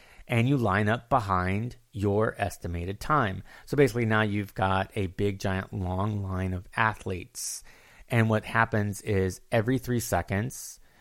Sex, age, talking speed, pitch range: male, 30-49, 145 wpm, 95-115 Hz